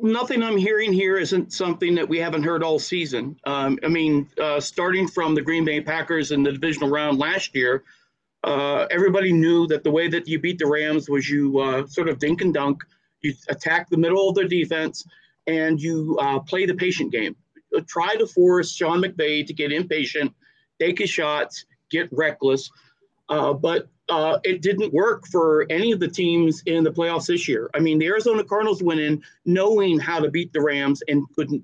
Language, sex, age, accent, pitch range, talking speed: English, male, 40-59, American, 150-190 Hz, 200 wpm